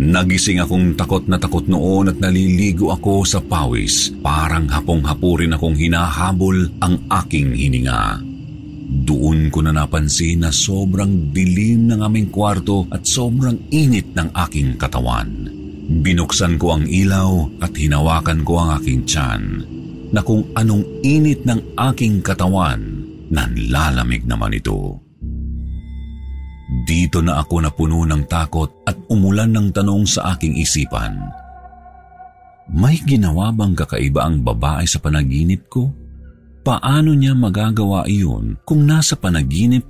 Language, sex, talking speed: Filipino, male, 130 wpm